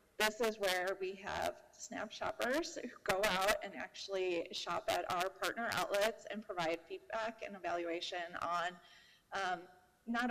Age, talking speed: 20-39, 145 wpm